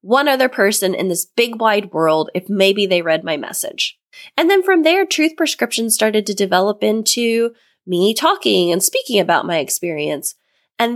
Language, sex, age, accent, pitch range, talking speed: English, female, 20-39, American, 190-260 Hz, 175 wpm